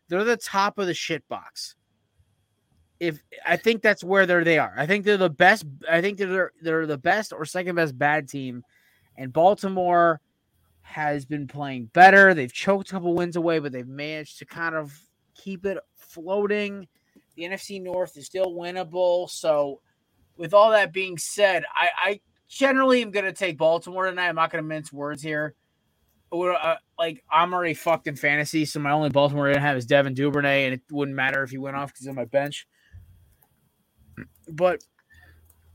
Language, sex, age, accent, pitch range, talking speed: English, male, 20-39, American, 125-175 Hz, 185 wpm